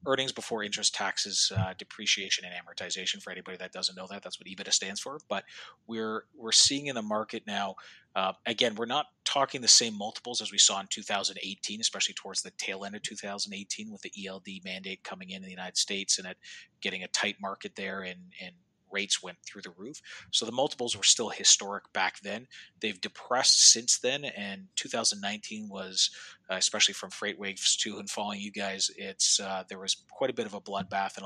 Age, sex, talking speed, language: 30-49, male, 205 wpm, English